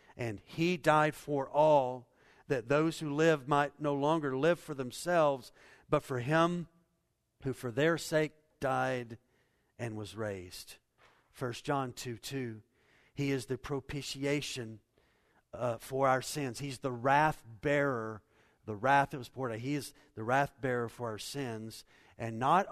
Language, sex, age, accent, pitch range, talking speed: English, male, 50-69, American, 120-155 Hz, 155 wpm